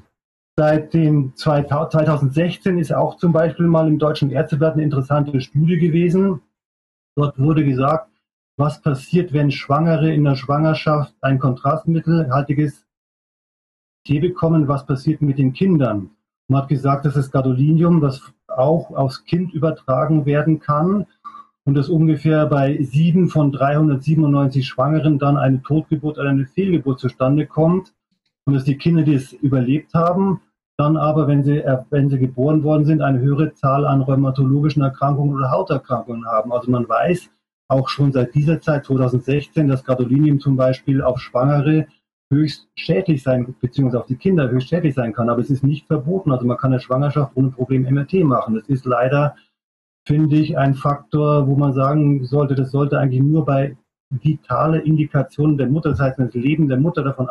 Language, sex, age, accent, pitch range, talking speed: German, male, 40-59, German, 135-155 Hz, 165 wpm